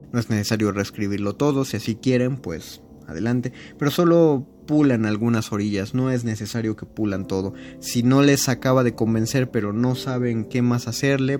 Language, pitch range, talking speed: Spanish, 100-120 Hz, 175 wpm